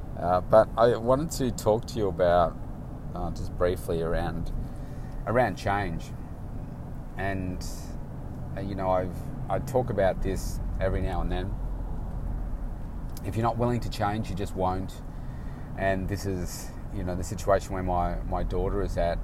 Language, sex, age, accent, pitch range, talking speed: English, male, 30-49, Australian, 90-115 Hz, 155 wpm